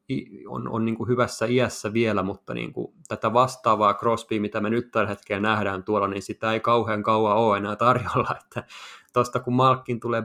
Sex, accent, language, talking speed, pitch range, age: male, native, Finnish, 180 wpm, 105-120 Hz, 20-39